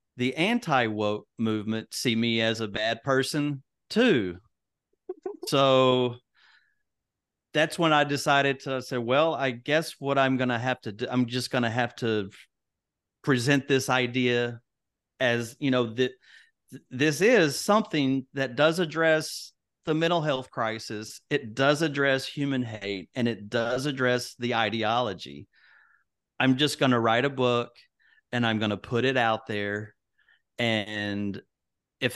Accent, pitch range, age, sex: American, 110-140 Hz, 40-59, male